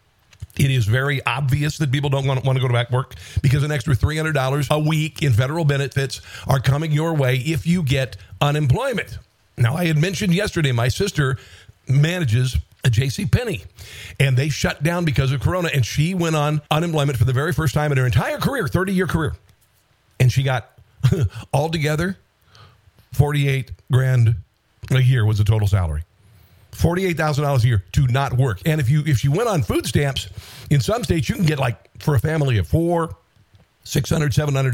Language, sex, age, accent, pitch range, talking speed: English, male, 50-69, American, 115-150 Hz, 185 wpm